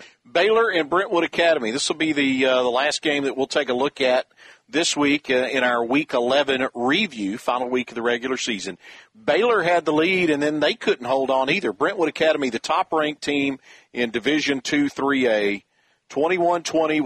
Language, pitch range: English, 125-150 Hz